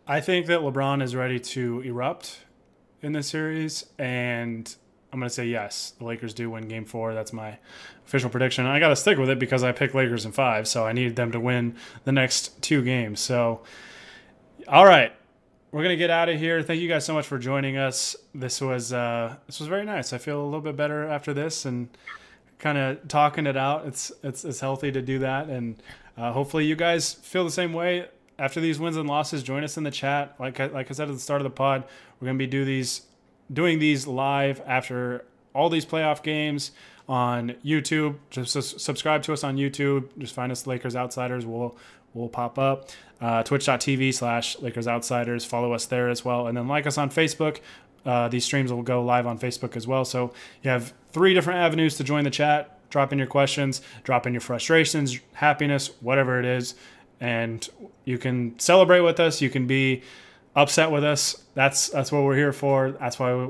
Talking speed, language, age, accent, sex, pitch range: 215 wpm, English, 20-39, American, male, 125-150 Hz